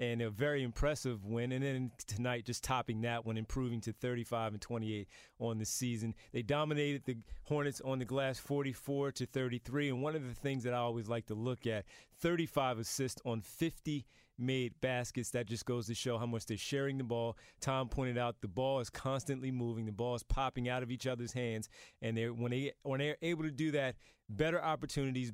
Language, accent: English, American